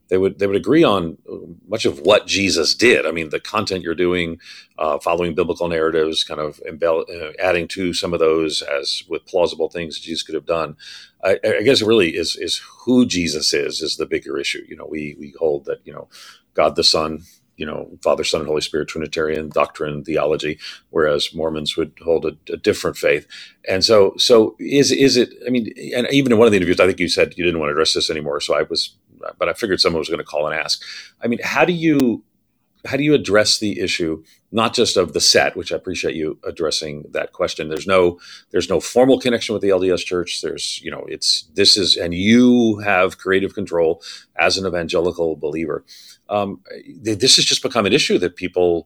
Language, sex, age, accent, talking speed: English, male, 40-59, American, 215 wpm